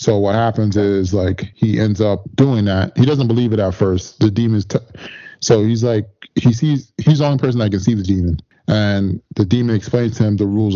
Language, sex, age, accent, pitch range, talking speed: English, male, 20-39, American, 100-115 Hz, 230 wpm